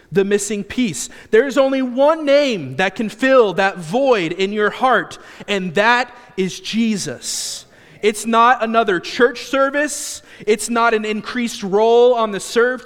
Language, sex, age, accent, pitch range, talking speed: English, male, 30-49, American, 175-240 Hz, 155 wpm